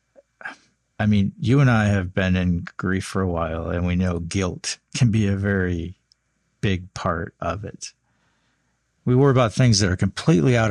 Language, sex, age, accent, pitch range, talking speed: English, male, 50-69, American, 90-105 Hz, 180 wpm